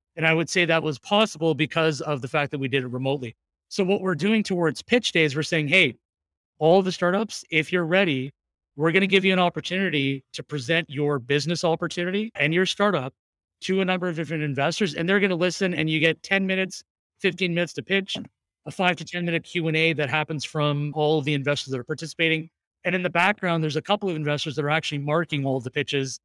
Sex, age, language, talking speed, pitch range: male, 30-49, English, 230 wpm, 145-180 Hz